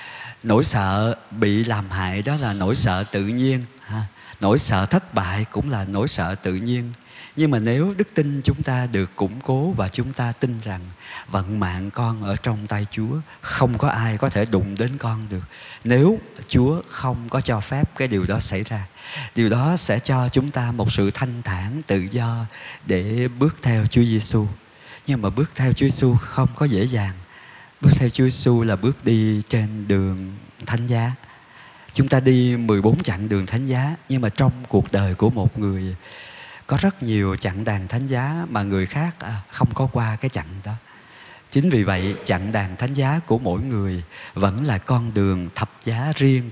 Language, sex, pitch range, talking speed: Vietnamese, male, 100-130 Hz, 195 wpm